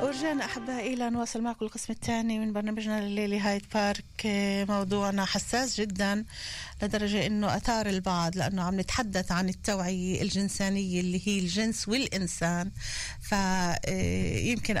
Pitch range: 185-225 Hz